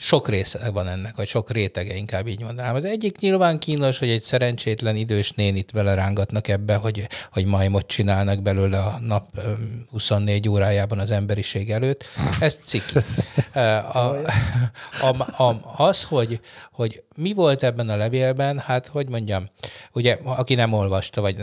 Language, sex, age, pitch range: Hungarian, male, 60-79, 100-125 Hz